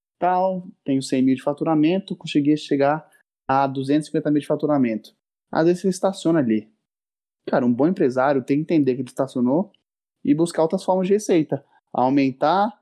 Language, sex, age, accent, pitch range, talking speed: Portuguese, male, 20-39, Brazilian, 135-170 Hz, 160 wpm